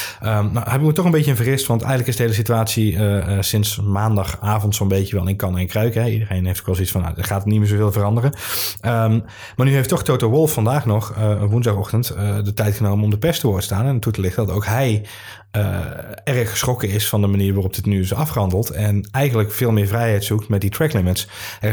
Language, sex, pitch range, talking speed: Dutch, male, 100-115 Hz, 245 wpm